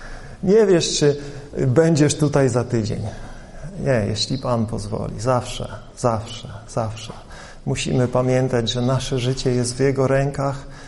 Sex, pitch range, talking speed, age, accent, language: male, 120-140 Hz, 125 wpm, 40-59, native, Polish